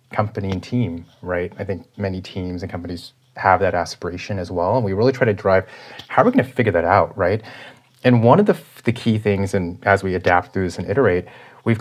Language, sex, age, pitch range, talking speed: English, male, 30-49, 90-115 Hz, 235 wpm